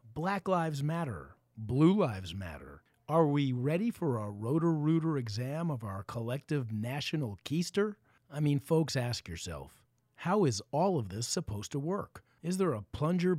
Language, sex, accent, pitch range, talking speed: English, male, American, 110-165 Hz, 160 wpm